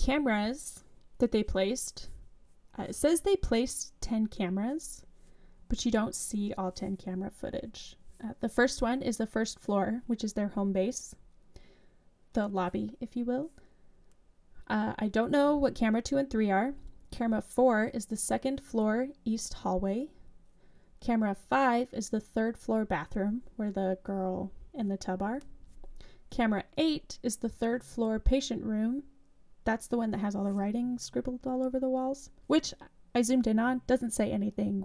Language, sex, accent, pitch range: English, female, American, 215-255 Hz